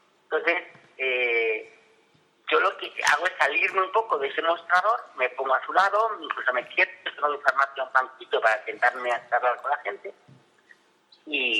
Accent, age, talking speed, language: Spanish, 40-59, 170 wpm, Spanish